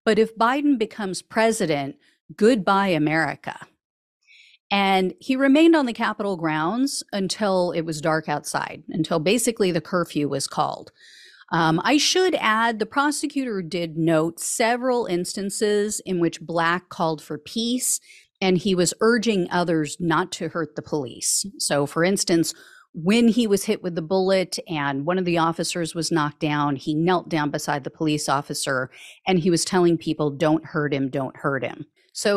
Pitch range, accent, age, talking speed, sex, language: 160-220 Hz, American, 40-59, 165 wpm, female, English